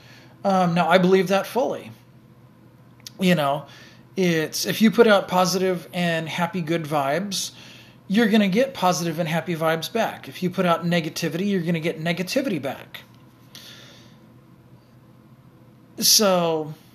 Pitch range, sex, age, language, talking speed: 165-195 Hz, male, 40-59, English, 140 wpm